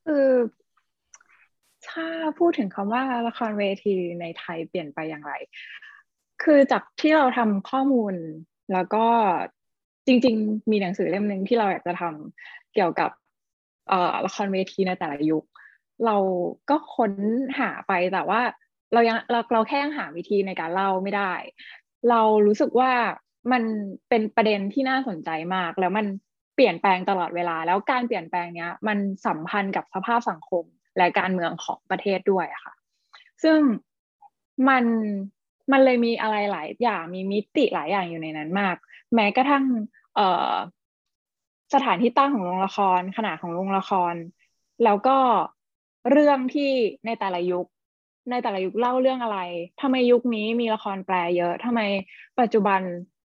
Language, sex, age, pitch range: English, female, 20-39, 185-245 Hz